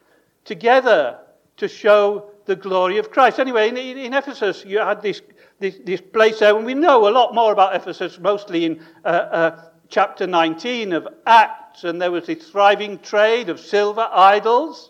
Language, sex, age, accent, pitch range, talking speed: English, male, 60-79, British, 195-250 Hz, 175 wpm